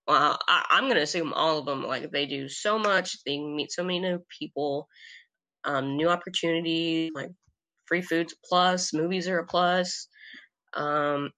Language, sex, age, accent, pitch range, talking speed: English, female, 20-39, American, 145-185 Hz, 170 wpm